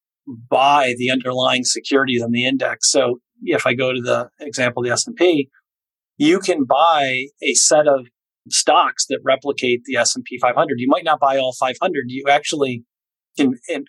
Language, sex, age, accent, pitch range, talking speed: English, male, 40-59, American, 125-150 Hz, 180 wpm